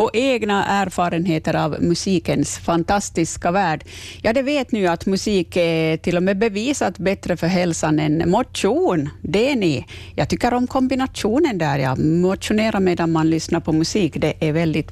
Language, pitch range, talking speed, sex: Swedish, 160-220 Hz, 165 wpm, female